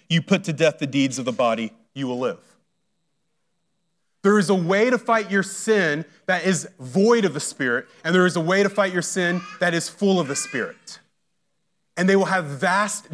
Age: 30-49